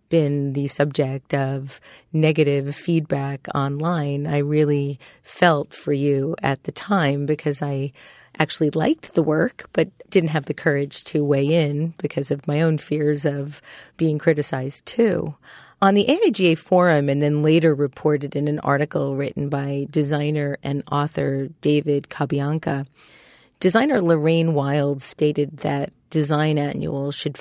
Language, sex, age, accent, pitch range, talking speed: English, female, 40-59, American, 140-155 Hz, 140 wpm